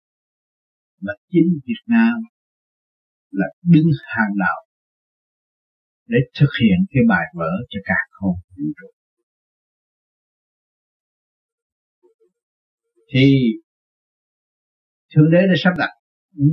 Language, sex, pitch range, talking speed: Vietnamese, male, 130-215 Hz, 85 wpm